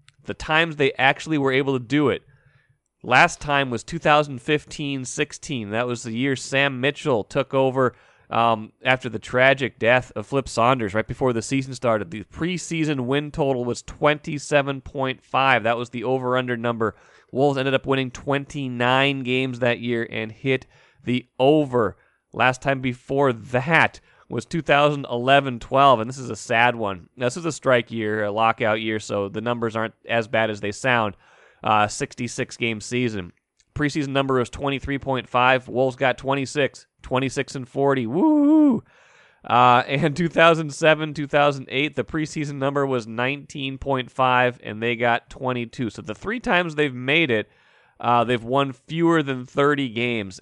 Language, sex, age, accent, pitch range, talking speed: English, male, 30-49, American, 120-140 Hz, 150 wpm